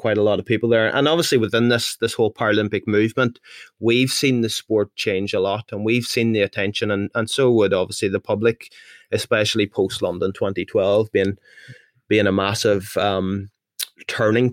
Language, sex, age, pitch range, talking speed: English, male, 20-39, 100-115 Hz, 175 wpm